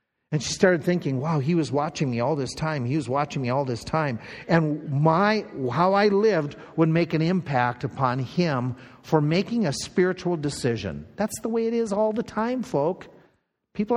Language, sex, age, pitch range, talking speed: English, male, 50-69, 135-190 Hz, 195 wpm